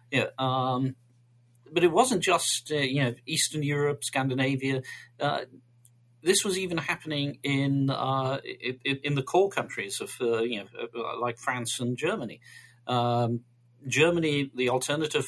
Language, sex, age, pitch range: English, male, 40-59, 120-140 Hz